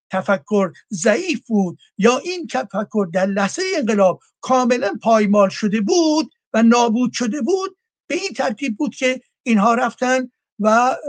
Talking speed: 135 wpm